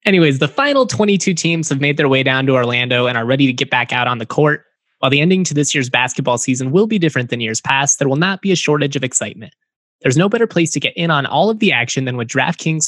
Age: 20-39